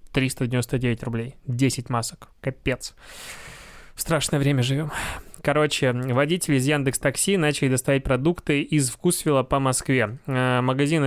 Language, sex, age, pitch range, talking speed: Russian, male, 20-39, 130-155 Hz, 115 wpm